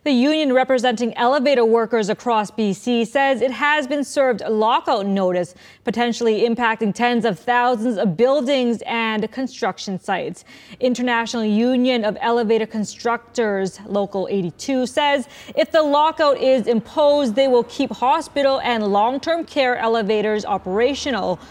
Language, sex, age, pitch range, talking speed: English, female, 20-39, 210-255 Hz, 130 wpm